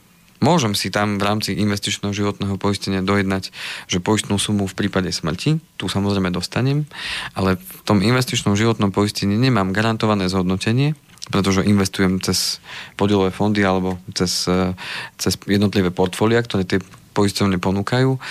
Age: 40-59